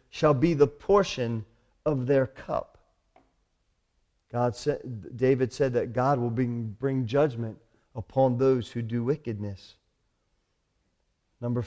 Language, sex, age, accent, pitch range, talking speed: Russian, male, 40-59, American, 110-145 Hz, 110 wpm